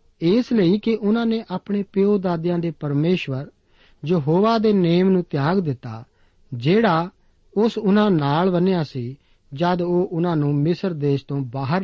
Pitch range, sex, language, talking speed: 145-195 Hz, male, Punjabi, 155 wpm